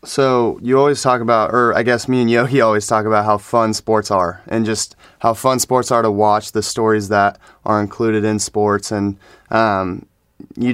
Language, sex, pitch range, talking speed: English, male, 100-115 Hz, 200 wpm